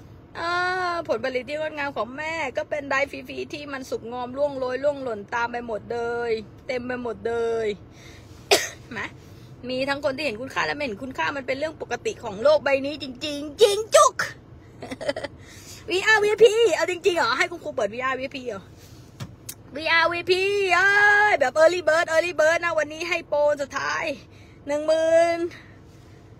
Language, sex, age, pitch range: English, female, 20-39, 235-330 Hz